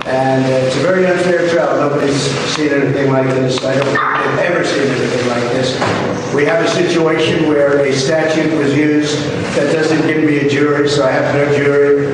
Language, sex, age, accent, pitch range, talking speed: English, male, 50-69, American, 140-175 Hz, 210 wpm